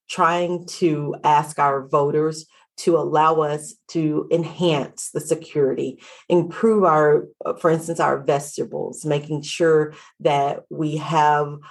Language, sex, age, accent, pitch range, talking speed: English, female, 40-59, American, 150-180 Hz, 120 wpm